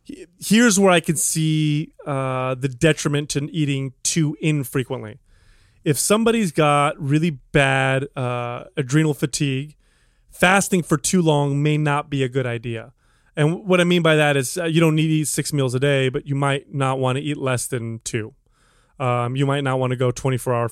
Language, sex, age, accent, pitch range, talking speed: English, male, 30-49, American, 130-155 Hz, 190 wpm